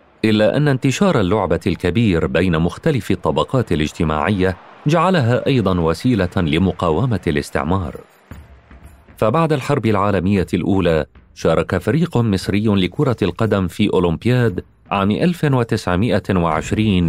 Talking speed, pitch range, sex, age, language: 95 wpm, 90-120 Hz, male, 40-59, Arabic